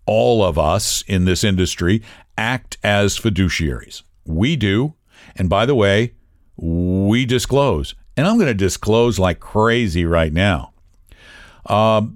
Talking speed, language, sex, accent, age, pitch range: 135 wpm, English, male, American, 60-79, 90-120 Hz